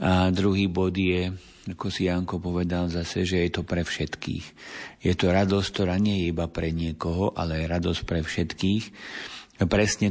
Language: Slovak